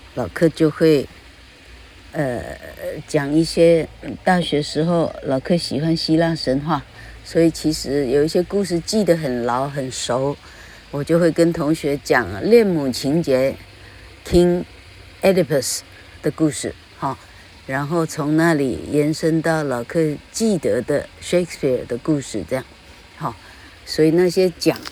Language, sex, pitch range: Chinese, female, 135-180 Hz